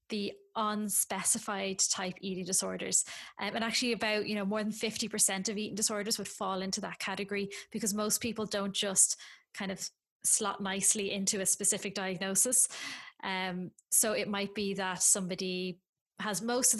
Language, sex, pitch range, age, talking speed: English, female, 190-215 Hz, 20-39, 165 wpm